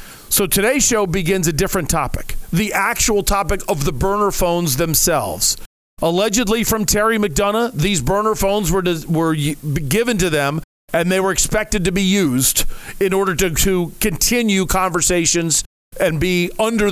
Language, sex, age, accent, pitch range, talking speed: English, male, 40-59, American, 155-205 Hz, 155 wpm